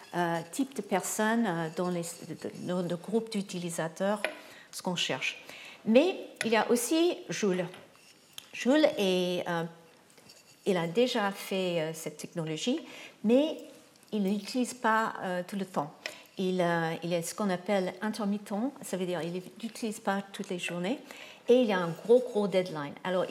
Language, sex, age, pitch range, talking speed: French, female, 50-69, 180-225 Hz, 160 wpm